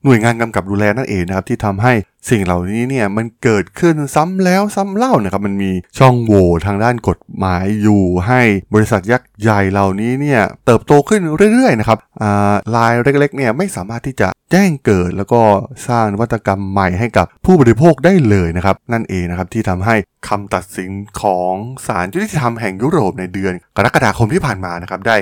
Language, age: Thai, 20-39